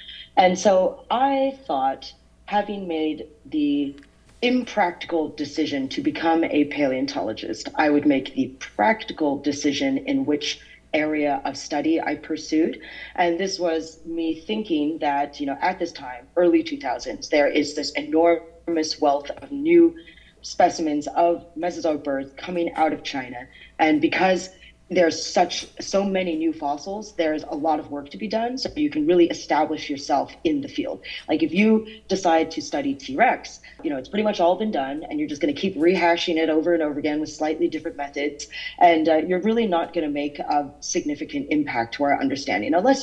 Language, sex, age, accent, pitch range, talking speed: English, female, 30-49, American, 150-250 Hz, 175 wpm